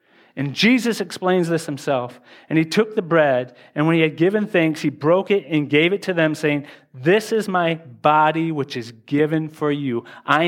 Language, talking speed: English, 200 wpm